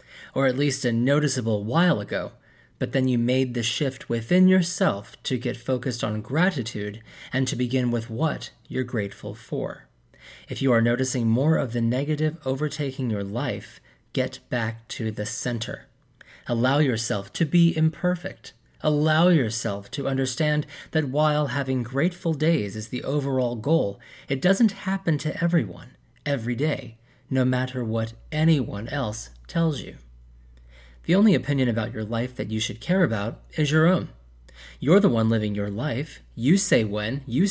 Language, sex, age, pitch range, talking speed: English, male, 30-49, 110-145 Hz, 160 wpm